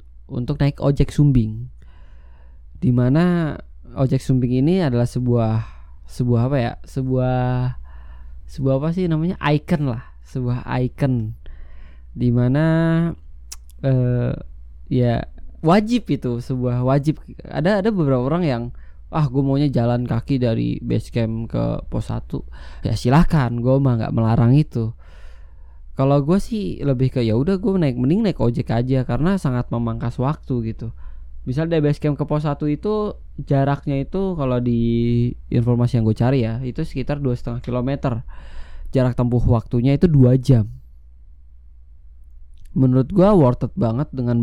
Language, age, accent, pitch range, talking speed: Indonesian, 20-39, native, 110-140 Hz, 135 wpm